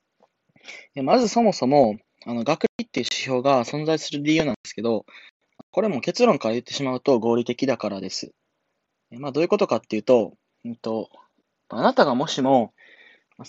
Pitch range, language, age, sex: 120-180 Hz, Japanese, 20-39, male